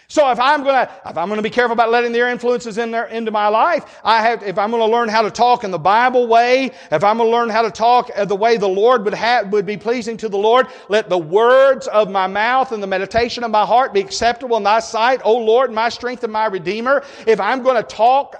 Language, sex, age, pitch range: English, male, 40-59, 200-245 Hz